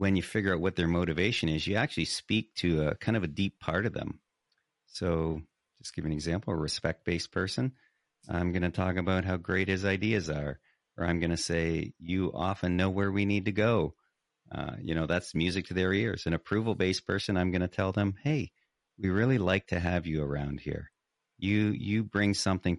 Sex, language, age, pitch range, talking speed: male, English, 40-59, 80-95 Hz, 205 wpm